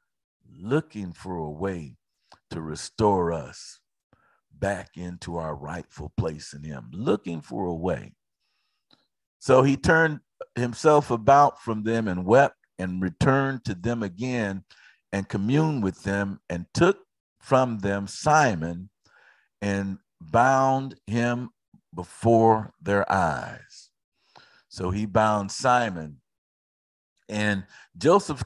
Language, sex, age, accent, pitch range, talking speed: English, male, 50-69, American, 90-135 Hz, 110 wpm